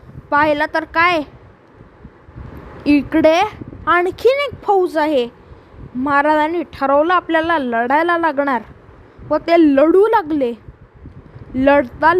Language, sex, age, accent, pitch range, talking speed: Marathi, female, 20-39, native, 285-360 Hz, 90 wpm